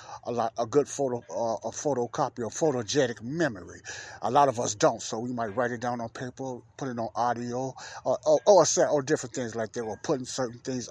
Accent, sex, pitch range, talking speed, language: American, male, 115-140 Hz, 230 wpm, English